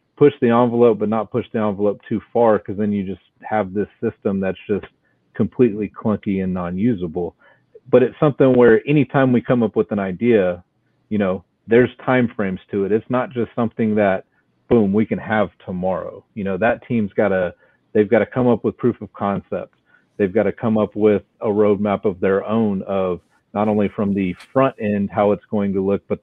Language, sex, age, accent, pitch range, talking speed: English, male, 40-59, American, 95-110 Hz, 205 wpm